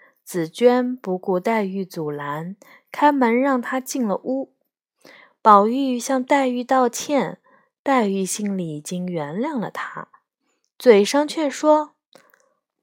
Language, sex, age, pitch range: Chinese, female, 20-39, 185-280 Hz